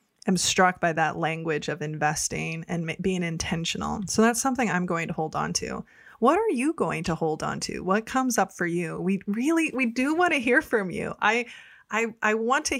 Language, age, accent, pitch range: English, 20-39, American, 180-265 Hz